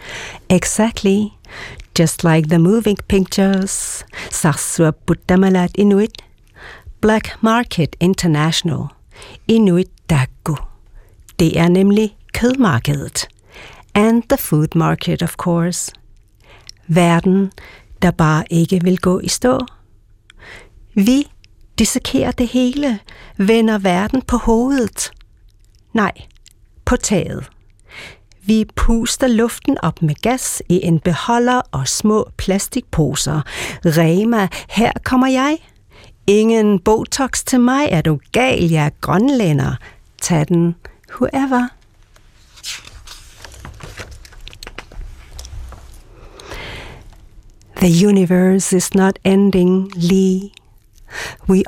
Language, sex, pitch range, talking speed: Danish, female, 160-220 Hz, 90 wpm